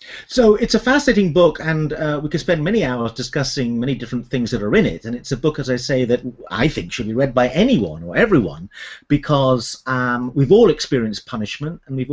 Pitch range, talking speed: 120-160 Hz, 225 wpm